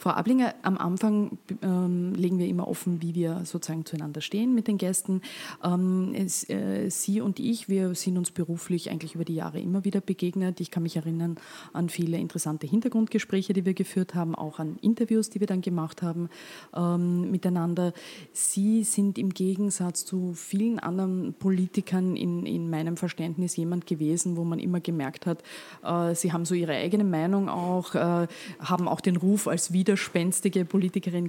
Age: 30-49